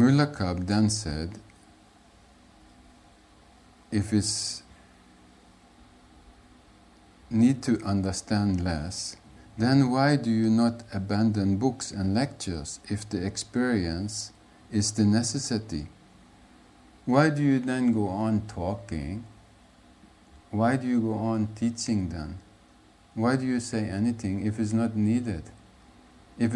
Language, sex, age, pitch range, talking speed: English, male, 50-69, 85-115 Hz, 110 wpm